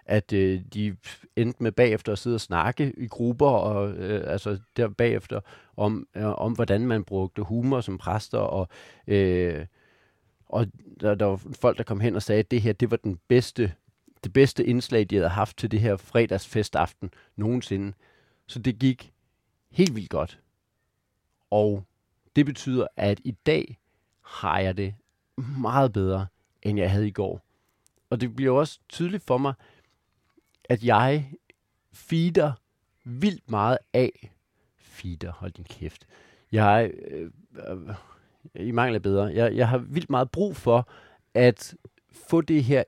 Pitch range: 100-130 Hz